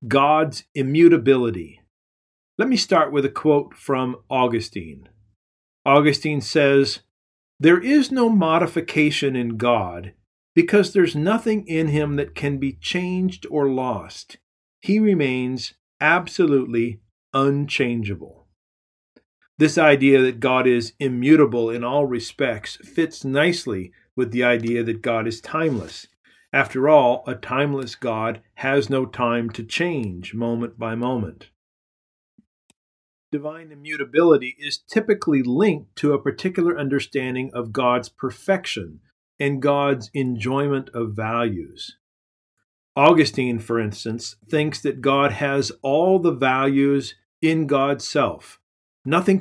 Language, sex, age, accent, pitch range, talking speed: English, male, 50-69, American, 115-150 Hz, 115 wpm